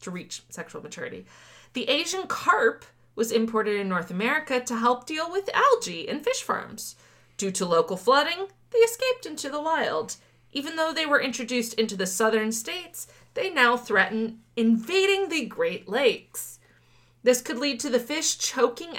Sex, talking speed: female, 165 wpm